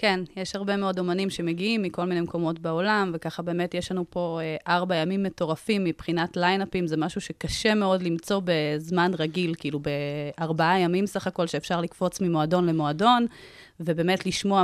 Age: 30-49